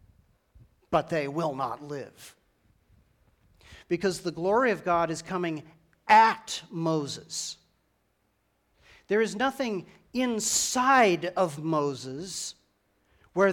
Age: 40-59